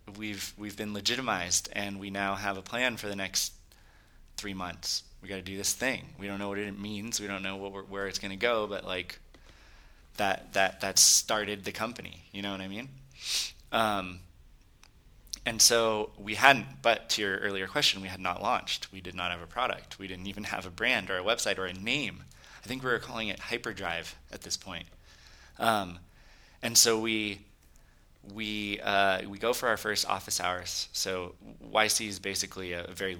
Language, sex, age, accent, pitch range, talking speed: English, male, 20-39, American, 90-105 Hz, 200 wpm